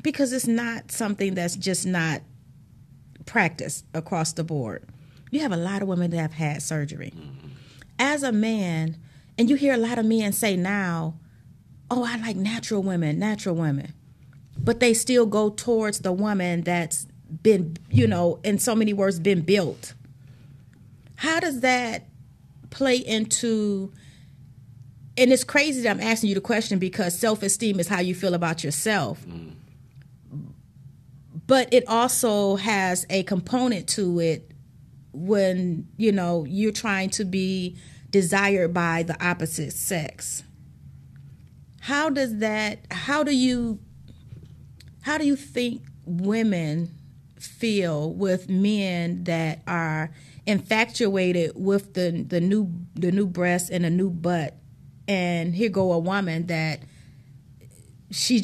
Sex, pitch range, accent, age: female, 145-215 Hz, American, 40-59